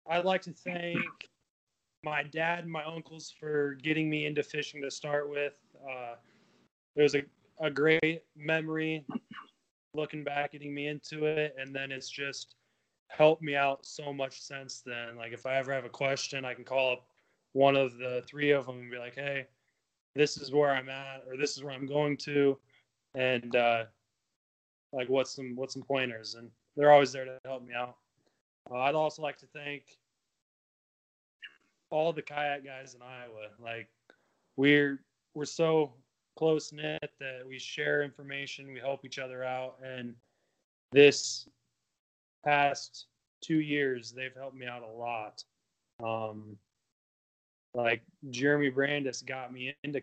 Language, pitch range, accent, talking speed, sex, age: English, 125-145 Hz, American, 160 wpm, male, 20-39